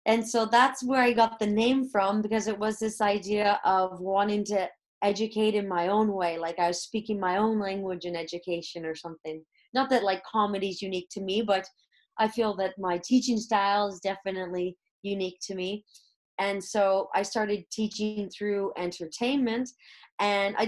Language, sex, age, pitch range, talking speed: English, female, 30-49, 205-255 Hz, 180 wpm